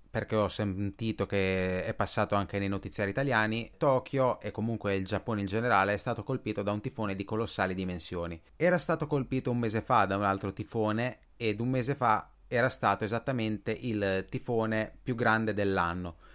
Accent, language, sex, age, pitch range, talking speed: native, Italian, male, 30-49, 95-115 Hz, 175 wpm